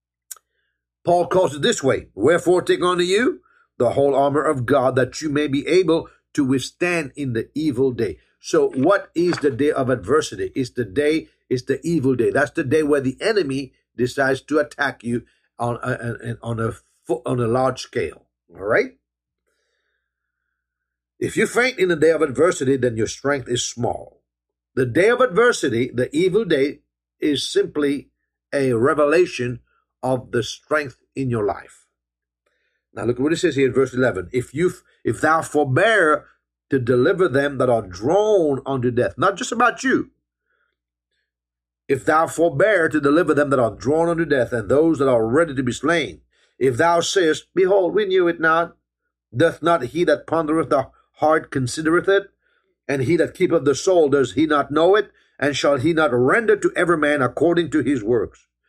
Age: 60-79